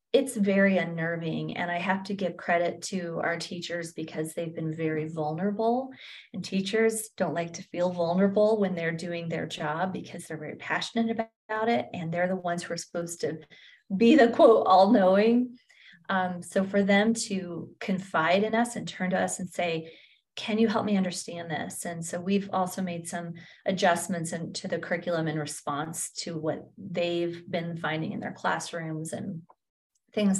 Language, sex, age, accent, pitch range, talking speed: English, female, 30-49, American, 170-205 Hz, 180 wpm